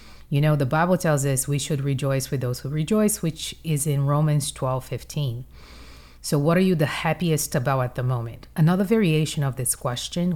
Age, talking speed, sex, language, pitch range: 30-49, 195 wpm, female, English, 125-155 Hz